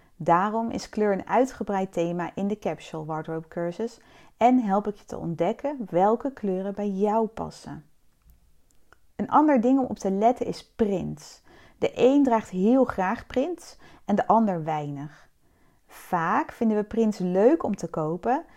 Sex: female